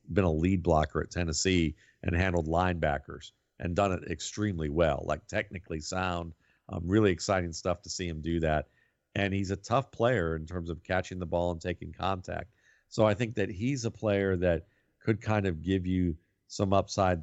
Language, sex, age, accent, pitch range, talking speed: English, male, 50-69, American, 85-100 Hz, 190 wpm